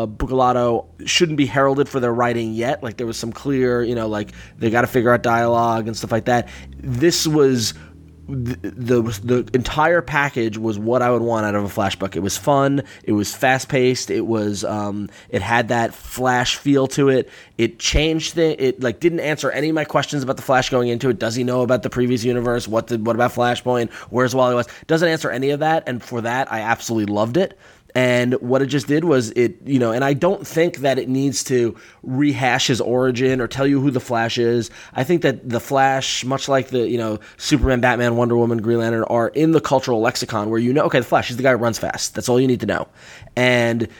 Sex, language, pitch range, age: male, English, 115-135 Hz, 20-39